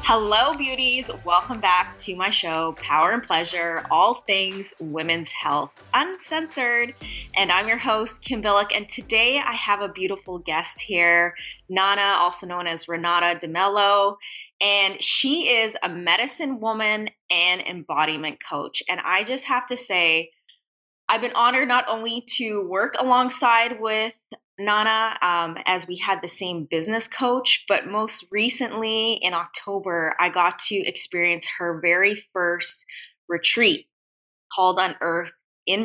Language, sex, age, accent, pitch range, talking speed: English, female, 20-39, American, 170-225 Hz, 140 wpm